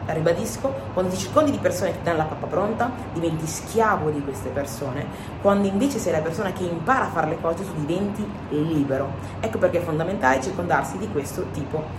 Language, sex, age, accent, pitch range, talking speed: Italian, female, 30-49, native, 150-195 Hz, 200 wpm